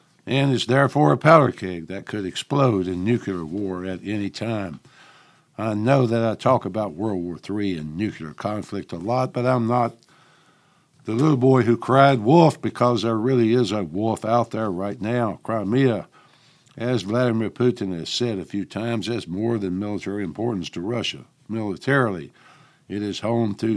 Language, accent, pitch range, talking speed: English, American, 100-130 Hz, 175 wpm